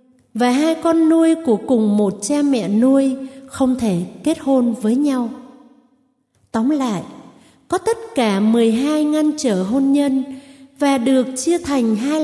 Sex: female